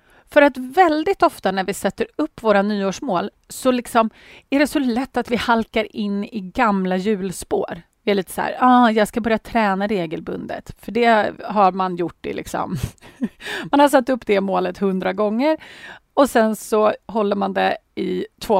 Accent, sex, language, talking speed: native, female, Swedish, 175 wpm